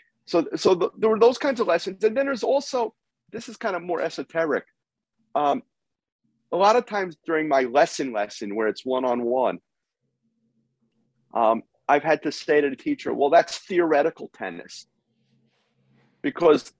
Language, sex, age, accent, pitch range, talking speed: English, male, 40-59, American, 120-165 Hz, 155 wpm